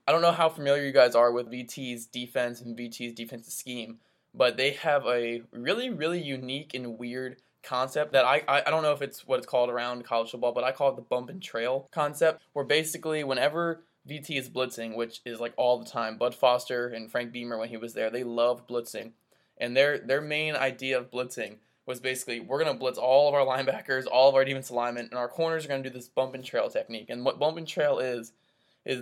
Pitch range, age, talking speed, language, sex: 120-145 Hz, 20-39, 230 wpm, English, male